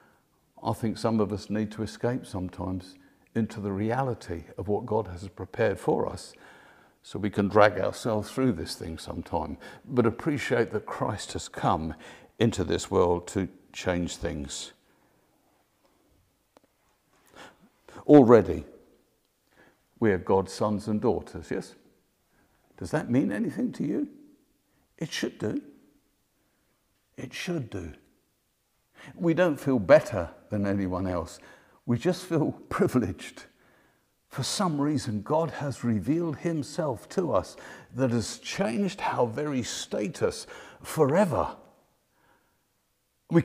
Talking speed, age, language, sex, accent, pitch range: 120 wpm, 60-79, English, male, British, 100-150 Hz